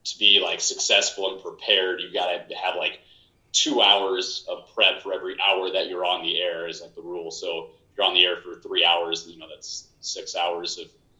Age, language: 30-49, English